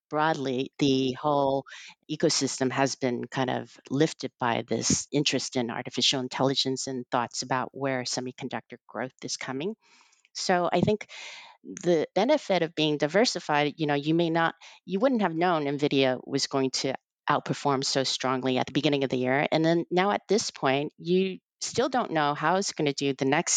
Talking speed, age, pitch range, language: 180 wpm, 40-59, 130-155 Hz, English